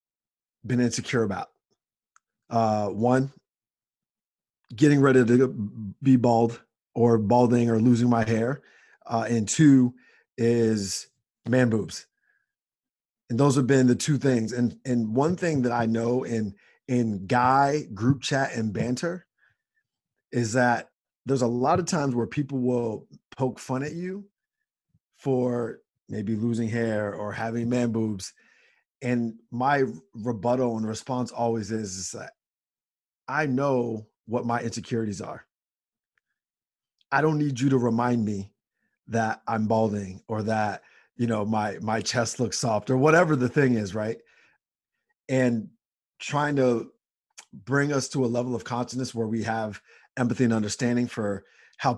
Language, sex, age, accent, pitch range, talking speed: English, male, 30-49, American, 110-130 Hz, 140 wpm